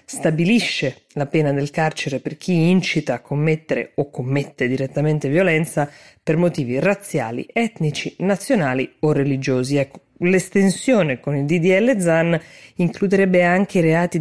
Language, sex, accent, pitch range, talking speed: Italian, female, native, 140-175 Hz, 130 wpm